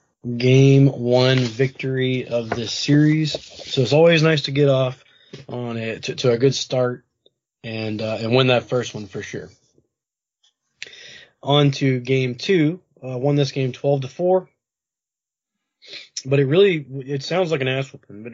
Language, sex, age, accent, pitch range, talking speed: English, male, 20-39, American, 125-145 Hz, 165 wpm